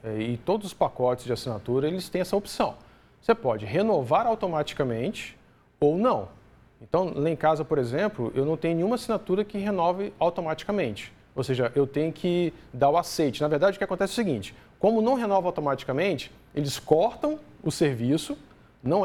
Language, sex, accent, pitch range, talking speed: Portuguese, male, Brazilian, 135-200 Hz, 175 wpm